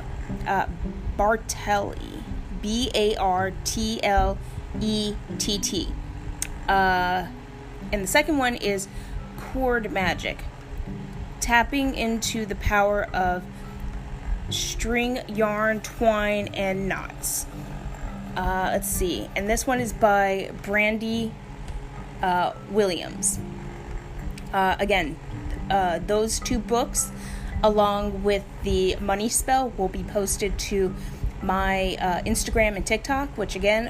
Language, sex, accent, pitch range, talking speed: English, female, American, 185-220 Hz, 105 wpm